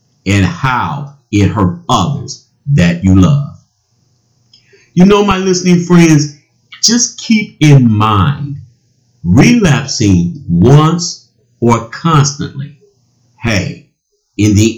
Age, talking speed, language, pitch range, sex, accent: 50-69, 95 wpm, English, 115-145 Hz, male, American